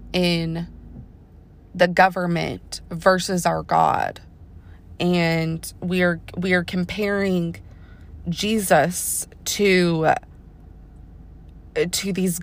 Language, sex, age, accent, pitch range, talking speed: English, female, 20-39, American, 160-185 Hz, 75 wpm